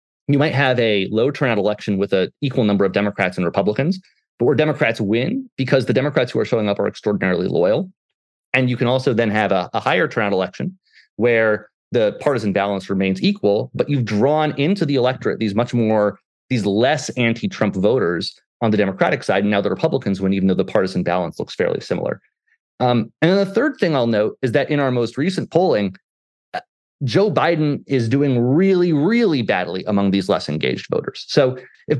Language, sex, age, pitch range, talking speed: English, male, 30-49, 100-145 Hz, 195 wpm